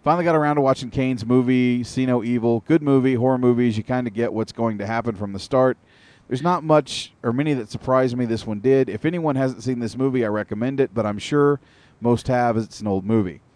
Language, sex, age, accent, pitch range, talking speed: English, male, 40-59, American, 110-140 Hz, 235 wpm